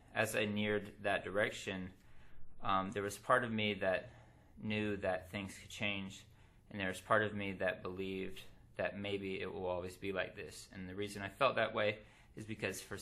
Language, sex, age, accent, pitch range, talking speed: English, male, 20-39, American, 90-105 Hz, 200 wpm